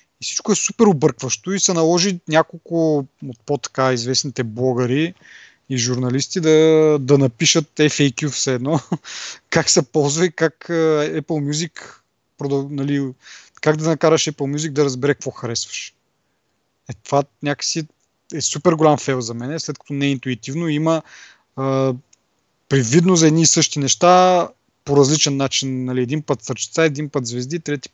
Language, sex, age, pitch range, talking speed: Bulgarian, male, 30-49, 130-170 Hz, 155 wpm